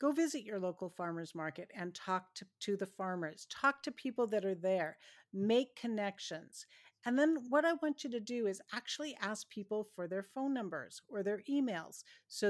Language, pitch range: English, 180-220 Hz